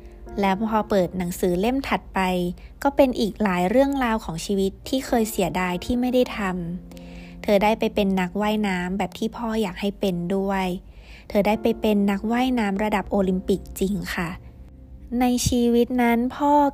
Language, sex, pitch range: Thai, female, 185-225 Hz